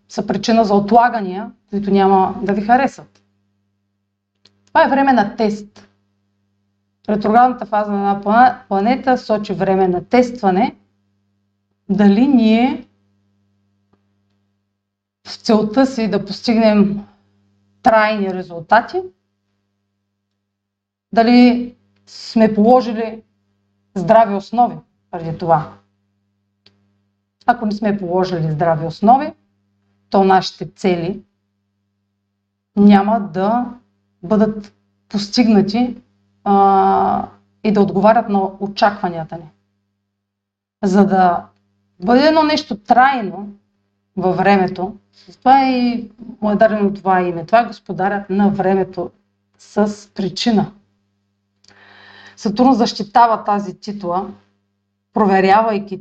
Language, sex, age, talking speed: Bulgarian, female, 30-49, 90 wpm